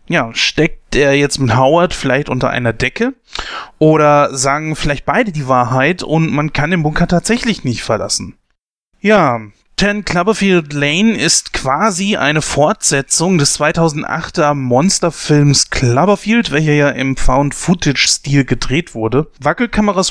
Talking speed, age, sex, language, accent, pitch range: 130 wpm, 30-49, male, German, German, 130-160 Hz